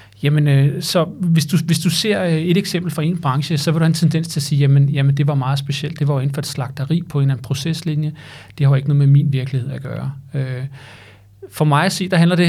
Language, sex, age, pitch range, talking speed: Danish, male, 40-59, 140-170 Hz, 270 wpm